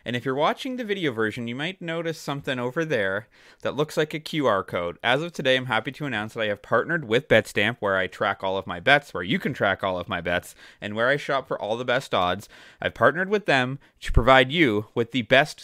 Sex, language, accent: male, English, American